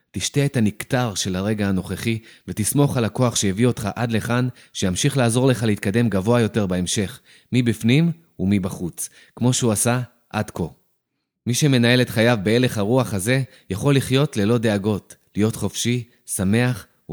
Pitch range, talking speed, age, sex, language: 100-125 Hz, 150 wpm, 30-49, male, Hebrew